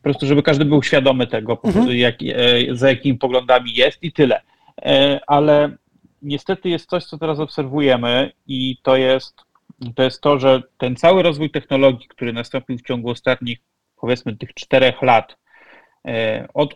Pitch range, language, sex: 125-150 Hz, Polish, male